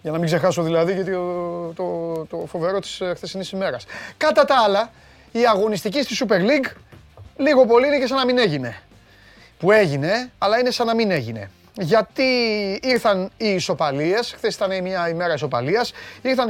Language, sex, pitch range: Greek, male, 150-220 Hz